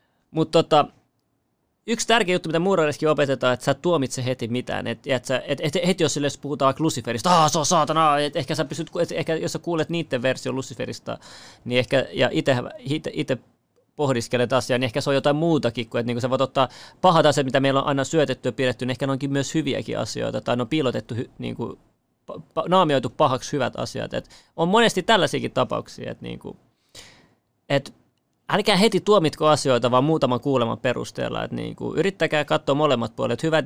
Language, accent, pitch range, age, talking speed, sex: Finnish, native, 130-165 Hz, 30-49, 180 wpm, male